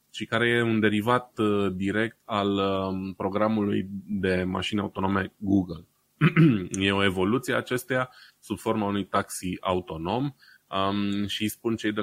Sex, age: male, 20-39